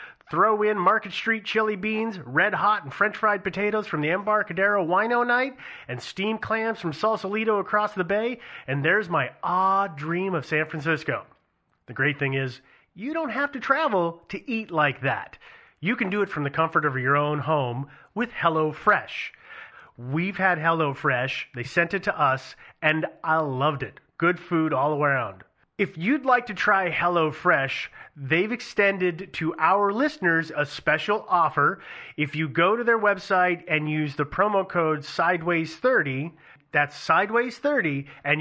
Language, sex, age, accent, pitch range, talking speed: English, male, 30-49, American, 150-205 Hz, 160 wpm